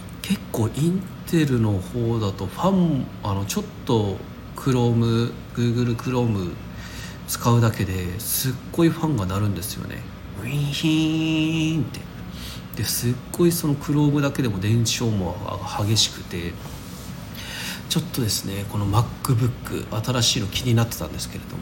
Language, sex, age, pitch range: Japanese, male, 40-59, 100-130 Hz